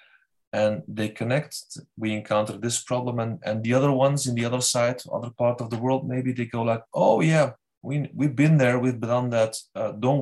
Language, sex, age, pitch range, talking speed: English, male, 30-49, 110-130 Hz, 210 wpm